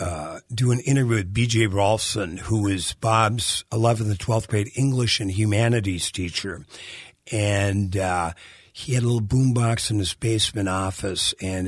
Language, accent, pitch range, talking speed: English, American, 100-120 Hz, 150 wpm